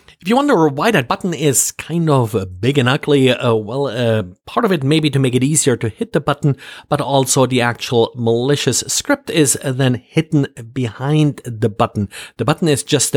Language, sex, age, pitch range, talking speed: English, male, 50-69, 115-145 Hz, 200 wpm